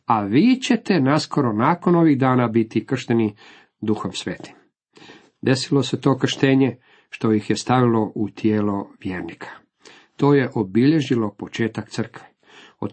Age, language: 50-69, Croatian